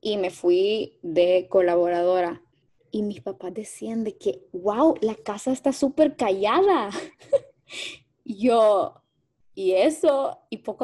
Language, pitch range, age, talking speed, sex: Spanish, 185-230 Hz, 10-29, 125 wpm, female